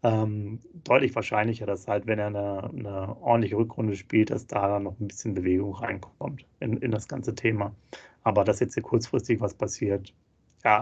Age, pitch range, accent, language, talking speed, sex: 30-49, 105-120 Hz, German, German, 185 wpm, male